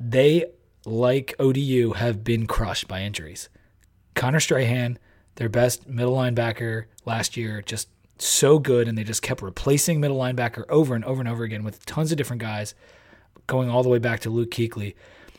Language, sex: English, male